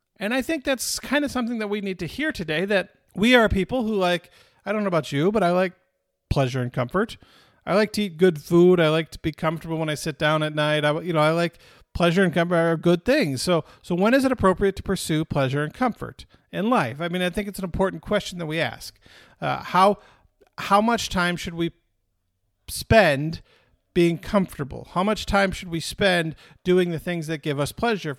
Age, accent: 40-59, American